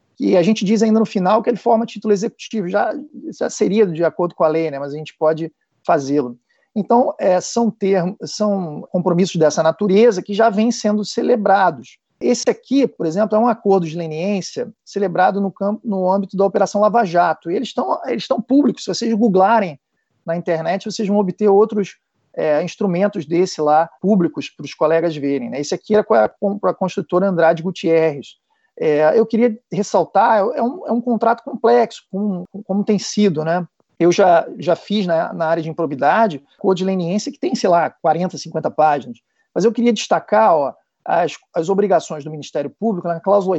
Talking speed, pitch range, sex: 190 wpm, 165-220 Hz, male